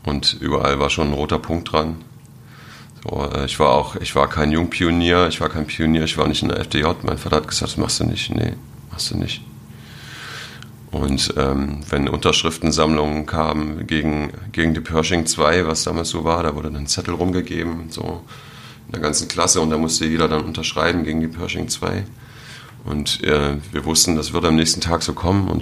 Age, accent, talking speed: 40-59, German, 200 wpm